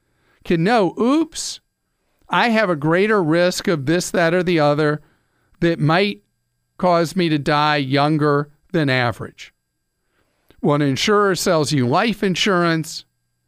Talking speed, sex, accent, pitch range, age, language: 130 wpm, male, American, 140-180 Hz, 50-69, English